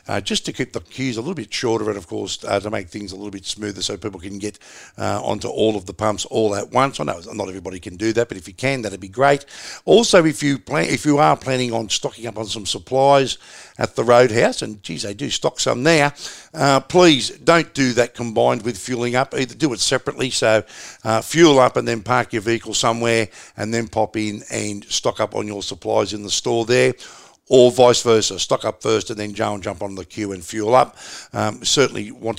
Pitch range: 105-135 Hz